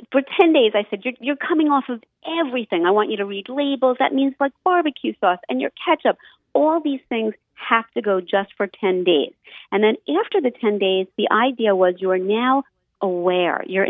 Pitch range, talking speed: 180-260 Hz, 210 wpm